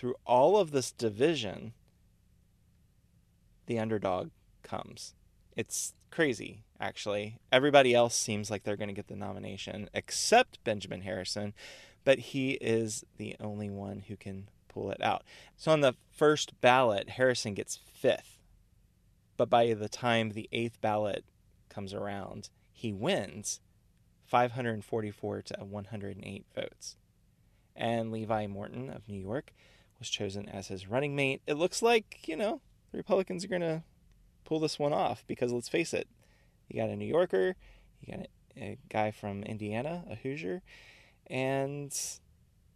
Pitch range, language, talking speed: 100-130 Hz, English, 140 wpm